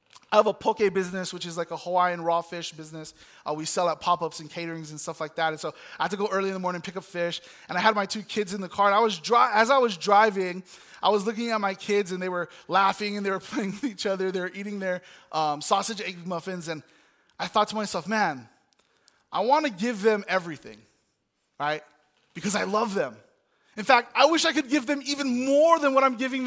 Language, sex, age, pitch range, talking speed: English, male, 20-39, 185-270 Hz, 250 wpm